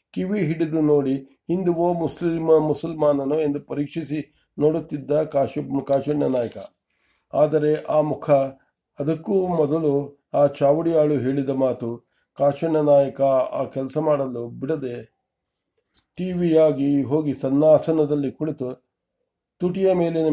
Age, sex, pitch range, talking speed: 50-69, male, 140-160 Hz, 85 wpm